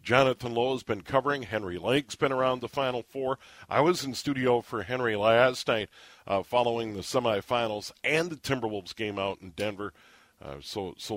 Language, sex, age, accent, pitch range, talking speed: English, male, 50-69, American, 110-145 Hz, 185 wpm